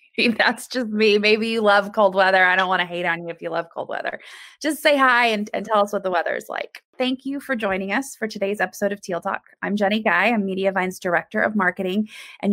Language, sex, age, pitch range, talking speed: English, female, 20-39, 185-235 Hz, 250 wpm